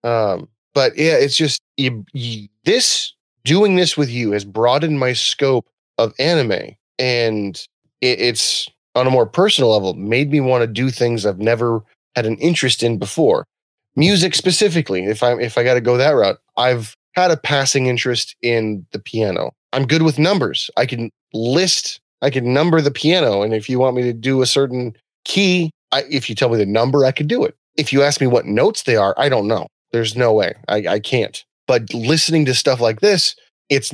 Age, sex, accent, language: 20-39, male, American, English